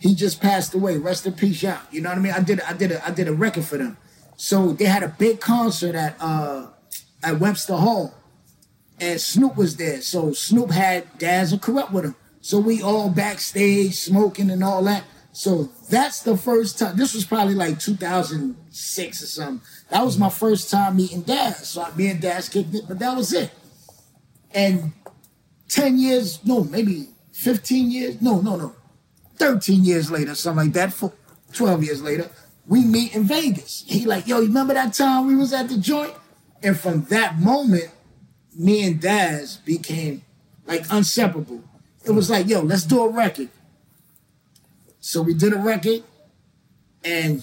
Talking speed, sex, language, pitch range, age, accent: 185 wpm, male, English, 165-215 Hz, 30-49, American